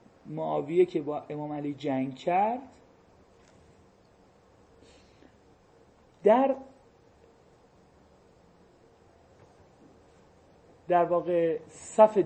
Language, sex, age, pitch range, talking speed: Persian, male, 40-59, 160-240 Hz, 55 wpm